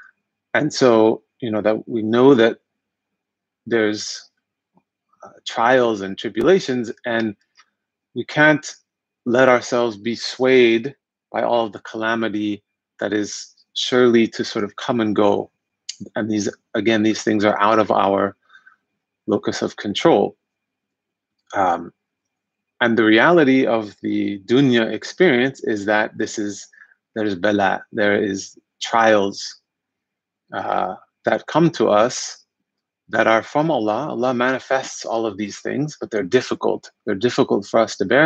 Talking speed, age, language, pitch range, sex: 135 wpm, 30-49, English, 105-125 Hz, male